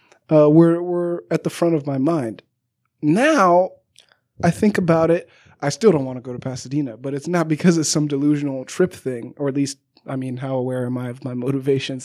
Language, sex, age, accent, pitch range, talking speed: English, male, 20-39, American, 130-160 Hz, 215 wpm